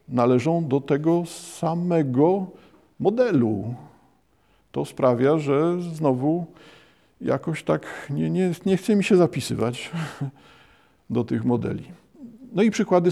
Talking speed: 110 wpm